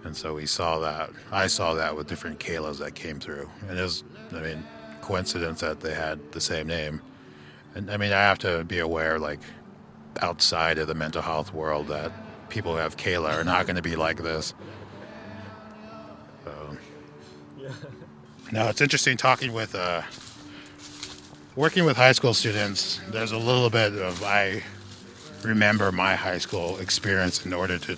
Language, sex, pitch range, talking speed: English, male, 75-105 Hz, 165 wpm